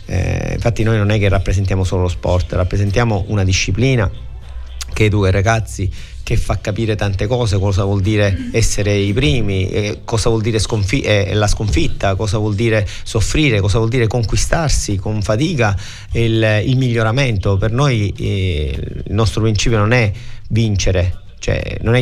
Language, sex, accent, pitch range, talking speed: Italian, male, native, 100-115 Hz, 165 wpm